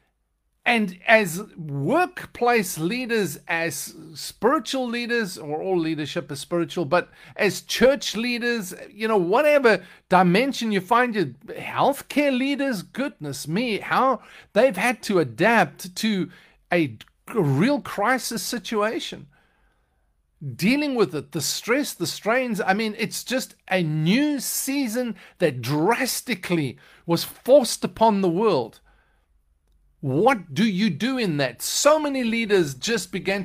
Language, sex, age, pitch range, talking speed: English, male, 50-69, 170-245 Hz, 125 wpm